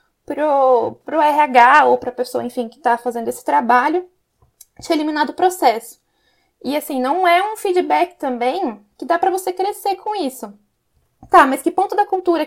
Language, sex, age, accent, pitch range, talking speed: Portuguese, female, 10-29, Brazilian, 275-365 Hz, 180 wpm